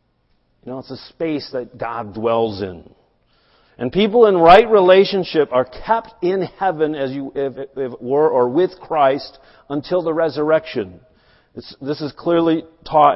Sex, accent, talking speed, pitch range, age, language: male, American, 140 wpm, 130-170 Hz, 40-59, English